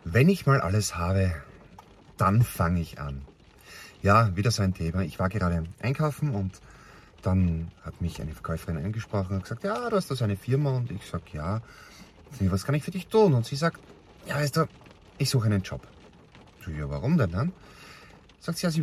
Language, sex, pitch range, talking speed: German, male, 85-135 Hz, 200 wpm